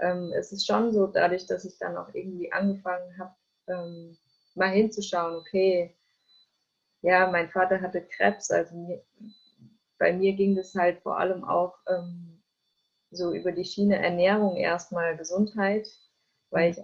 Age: 20-39